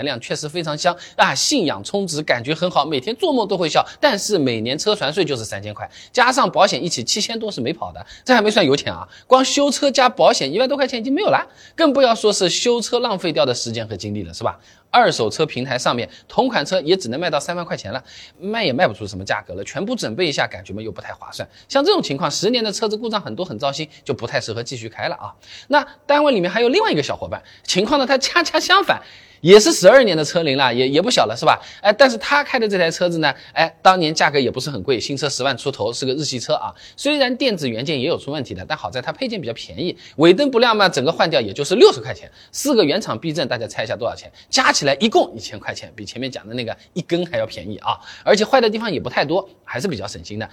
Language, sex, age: Chinese, male, 20-39